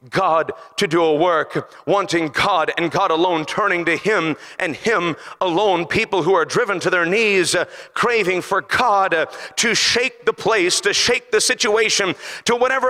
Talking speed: 175 wpm